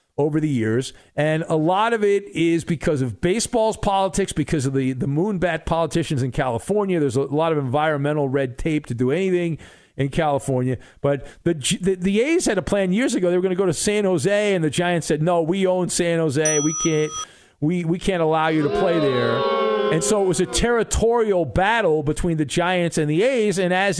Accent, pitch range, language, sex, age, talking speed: American, 150-195 Hz, English, male, 50-69, 215 wpm